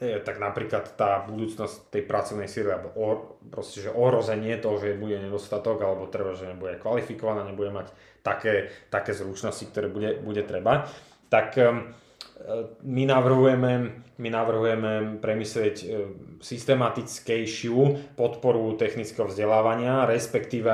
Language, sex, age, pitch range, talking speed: Slovak, male, 20-39, 105-125 Hz, 115 wpm